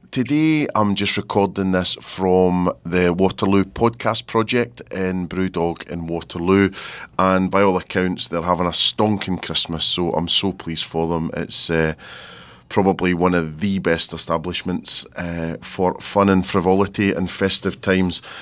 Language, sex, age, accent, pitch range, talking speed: English, male, 30-49, British, 85-100 Hz, 145 wpm